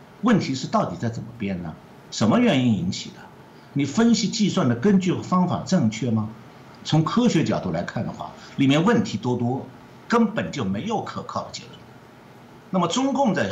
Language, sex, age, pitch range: Chinese, male, 60-79, 120-175 Hz